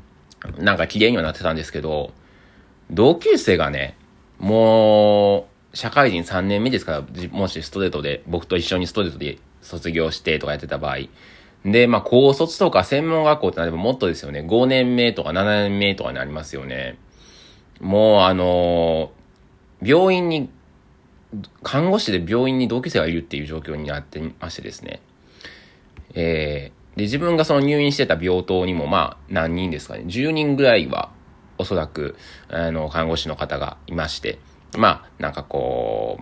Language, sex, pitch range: Japanese, male, 75-105 Hz